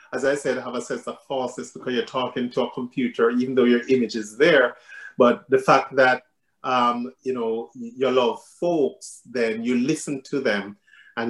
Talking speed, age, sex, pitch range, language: 190 wpm, 30-49, male, 115-135 Hz, English